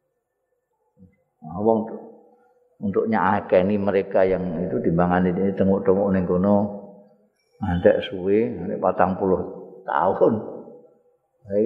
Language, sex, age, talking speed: Indonesian, male, 50-69, 100 wpm